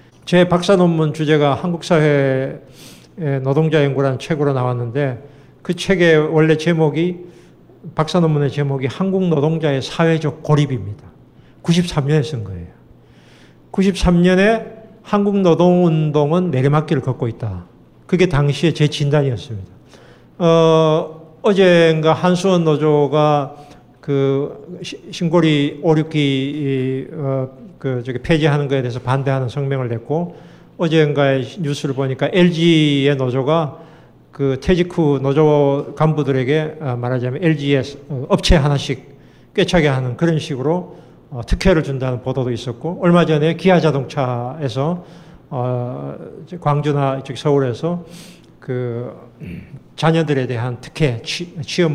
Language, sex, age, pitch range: Korean, male, 50-69, 135-165 Hz